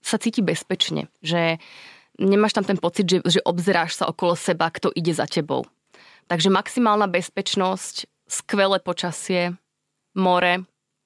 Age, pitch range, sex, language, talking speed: 20-39, 165-195 Hz, female, Slovak, 130 wpm